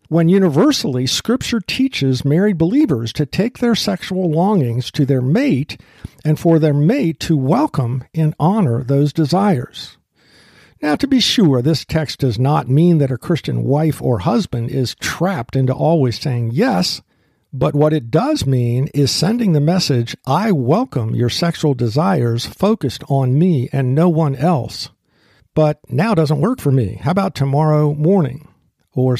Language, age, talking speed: English, 50-69, 160 wpm